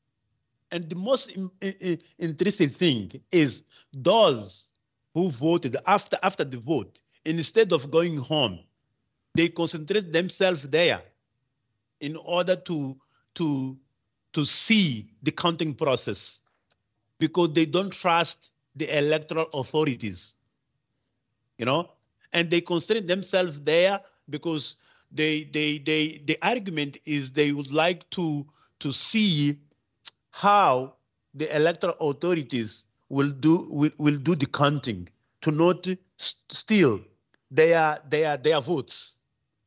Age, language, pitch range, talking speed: 40-59, English, 130-170 Hz, 115 wpm